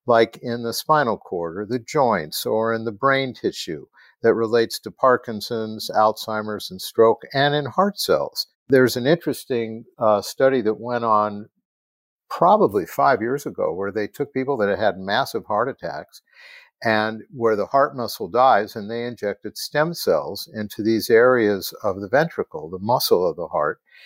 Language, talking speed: English, 170 wpm